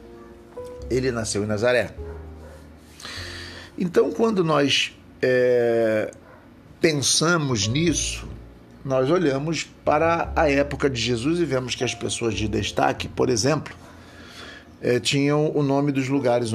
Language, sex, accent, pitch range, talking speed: Portuguese, male, Brazilian, 115-150 Hz, 110 wpm